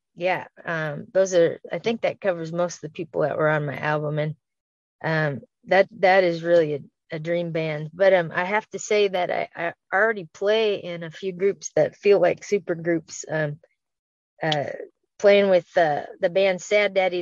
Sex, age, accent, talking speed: female, 20-39, American, 195 wpm